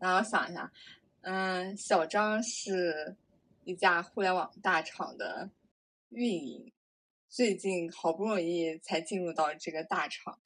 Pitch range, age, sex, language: 165-205 Hz, 20-39, female, Chinese